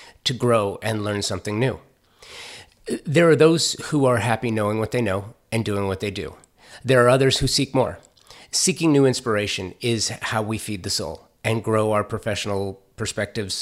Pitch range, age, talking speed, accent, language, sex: 100-120 Hz, 30-49, 180 wpm, American, English, male